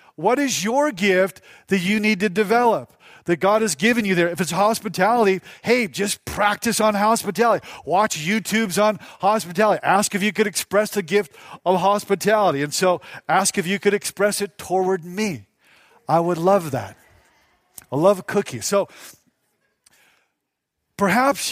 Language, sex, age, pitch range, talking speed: English, male, 40-59, 165-215 Hz, 155 wpm